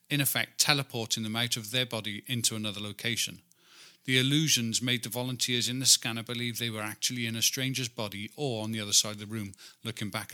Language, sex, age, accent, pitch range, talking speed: English, male, 40-59, British, 110-130 Hz, 215 wpm